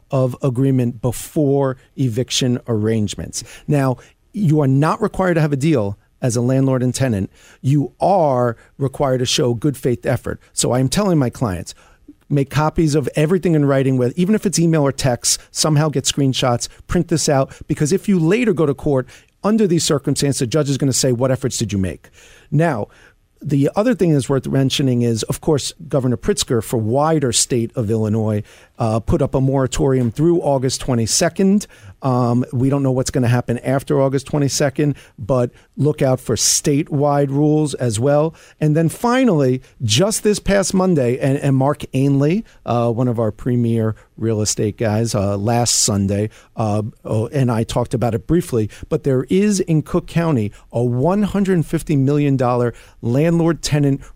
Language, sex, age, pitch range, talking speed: English, male, 40-59, 120-155 Hz, 170 wpm